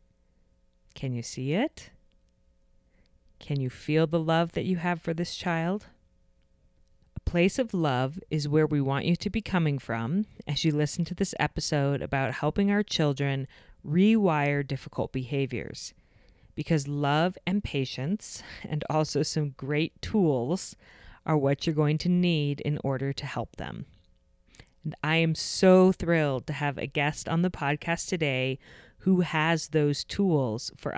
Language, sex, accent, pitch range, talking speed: English, female, American, 140-180 Hz, 155 wpm